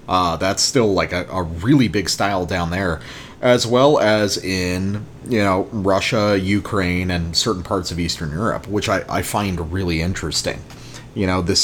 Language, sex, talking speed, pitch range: English, male, 175 wpm, 95-120 Hz